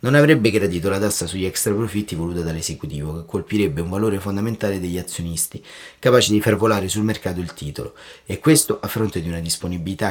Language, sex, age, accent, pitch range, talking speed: Italian, male, 30-49, native, 90-110 Hz, 190 wpm